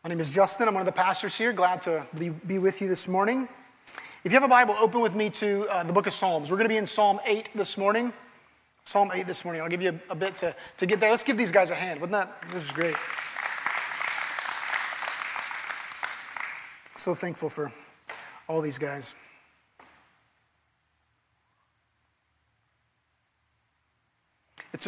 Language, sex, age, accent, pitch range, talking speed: English, male, 30-49, American, 160-205 Hz, 170 wpm